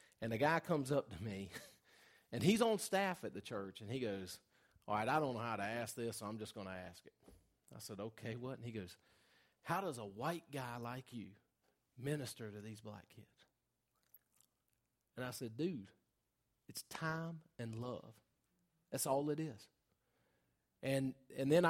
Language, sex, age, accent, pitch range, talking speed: English, male, 40-59, American, 110-140 Hz, 185 wpm